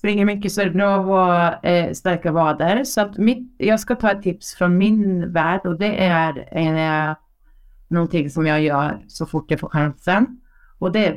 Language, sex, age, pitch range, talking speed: Swedish, female, 30-49, 185-250 Hz, 205 wpm